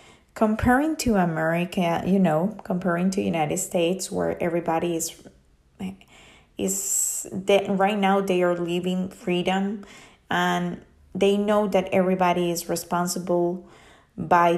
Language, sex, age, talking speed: English, female, 20-39, 120 wpm